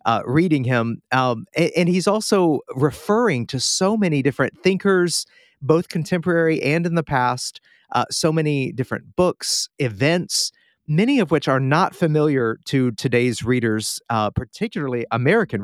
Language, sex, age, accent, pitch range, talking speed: English, male, 40-59, American, 130-170 Hz, 145 wpm